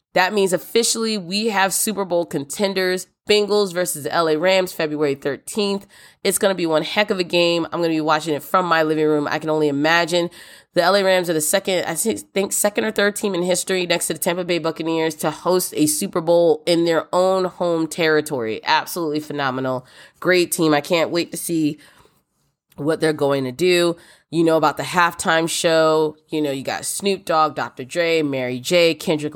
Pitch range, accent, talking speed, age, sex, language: 150-180 Hz, American, 200 wpm, 20-39, female, English